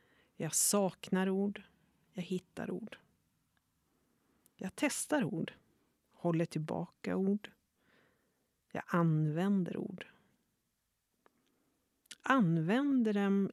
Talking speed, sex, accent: 75 wpm, female, native